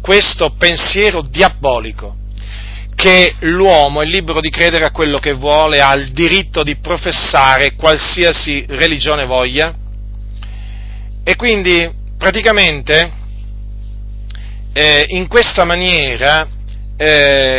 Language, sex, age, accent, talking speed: Italian, male, 40-59, native, 100 wpm